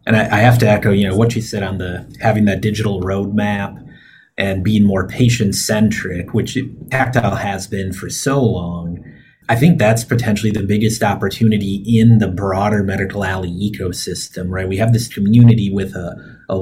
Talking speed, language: 175 wpm, English